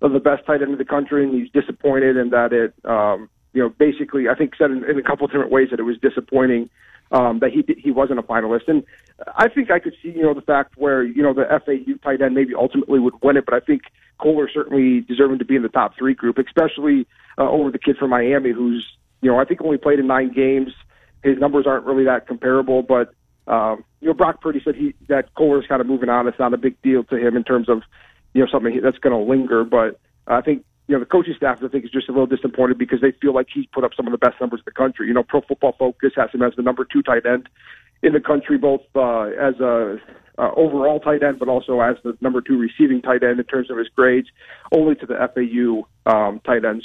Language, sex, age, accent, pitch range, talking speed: English, male, 40-59, American, 125-140 Hz, 260 wpm